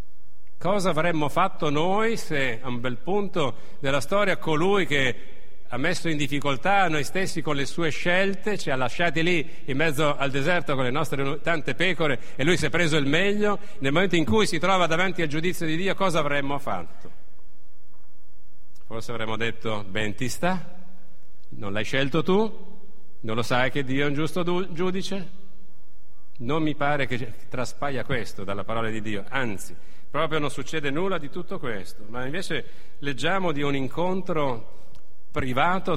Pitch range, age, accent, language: 130-180 Hz, 50-69, native, Italian